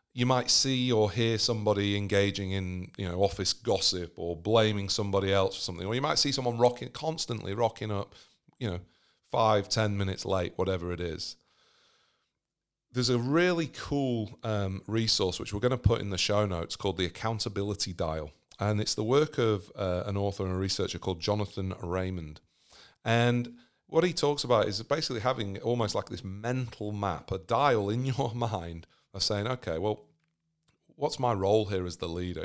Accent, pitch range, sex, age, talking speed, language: British, 95-120 Hz, male, 40-59, 180 wpm, English